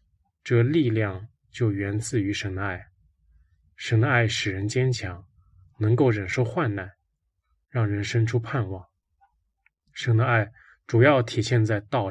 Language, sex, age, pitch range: Chinese, male, 20-39, 105-125 Hz